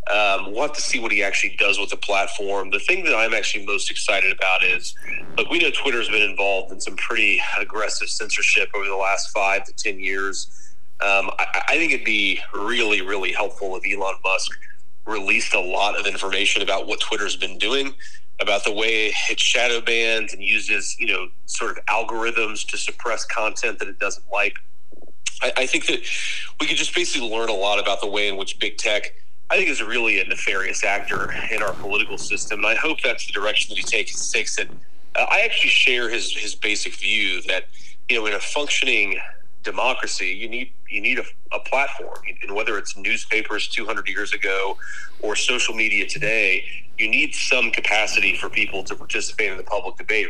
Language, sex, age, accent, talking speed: English, male, 30-49, American, 200 wpm